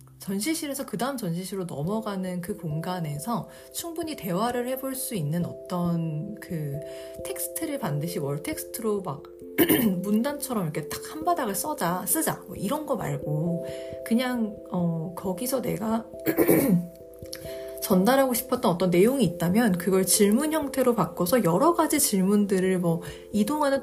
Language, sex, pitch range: Korean, female, 165-230 Hz